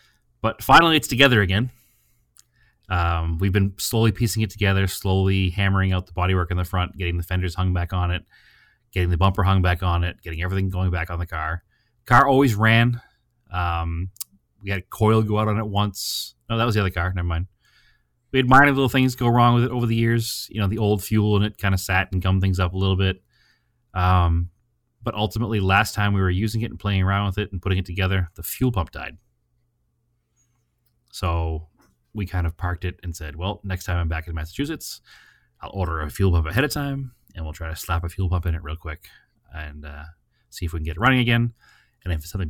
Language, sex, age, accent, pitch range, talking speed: English, male, 30-49, American, 85-110 Hz, 230 wpm